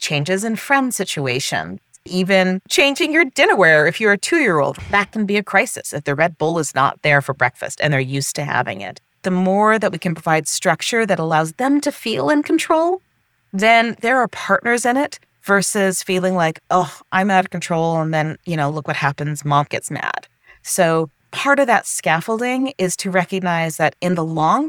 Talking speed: 200 wpm